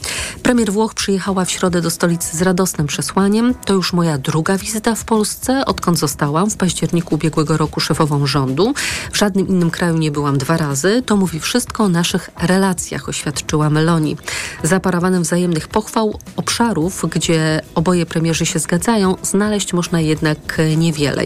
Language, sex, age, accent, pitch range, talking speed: Polish, female, 40-59, native, 165-200 Hz, 150 wpm